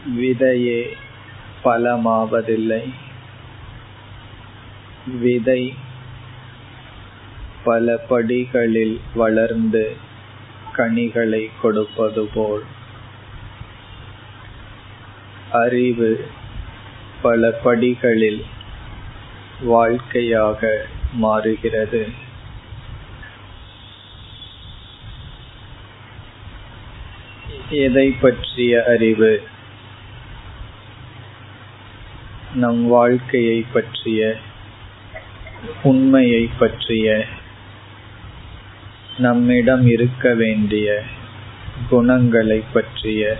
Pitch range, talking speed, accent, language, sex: 105-120 Hz, 35 wpm, native, Tamil, male